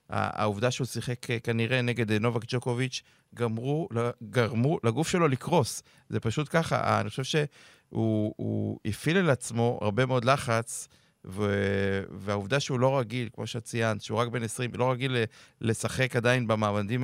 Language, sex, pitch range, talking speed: Hebrew, male, 115-135 Hz, 135 wpm